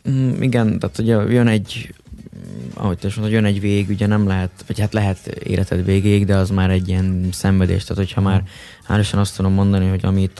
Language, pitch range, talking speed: Hungarian, 95-105 Hz, 190 wpm